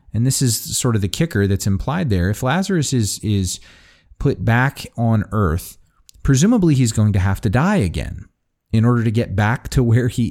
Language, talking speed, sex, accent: English, 200 wpm, male, American